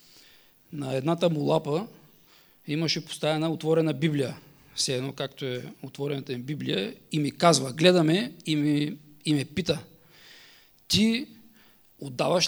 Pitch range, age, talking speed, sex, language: 140-175 Hz, 40-59, 120 wpm, male, English